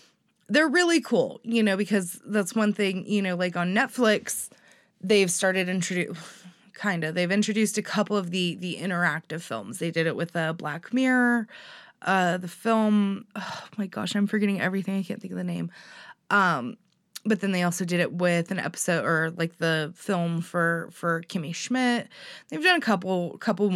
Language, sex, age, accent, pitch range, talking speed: English, female, 20-39, American, 175-220 Hz, 185 wpm